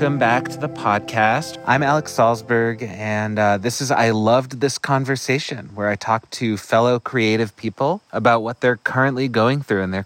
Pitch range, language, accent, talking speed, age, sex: 100-125 Hz, English, American, 185 wpm, 30-49, male